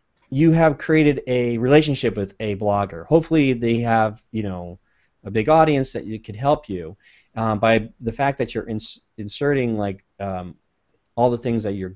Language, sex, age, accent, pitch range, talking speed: English, male, 30-49, American, 105-135 Hz, 175 wpm